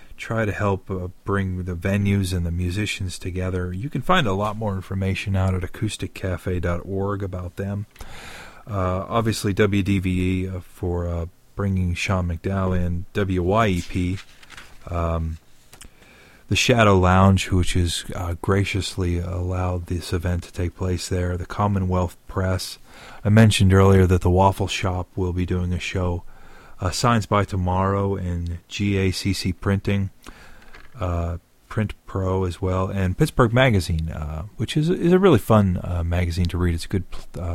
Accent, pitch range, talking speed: American, 90-105 Hz, 145 wpm